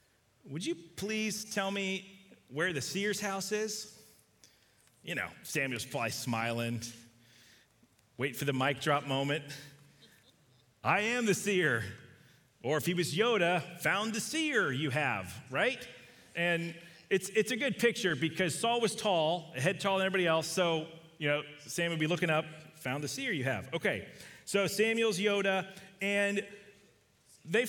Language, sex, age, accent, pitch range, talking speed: English, male, 40-59, American, 145-200 Hz, 155 wpm